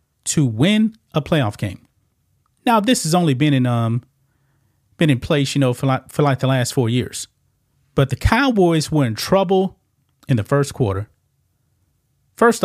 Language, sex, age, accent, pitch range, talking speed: English, male, 30-49, American, 115-165 Hz, 170 wpm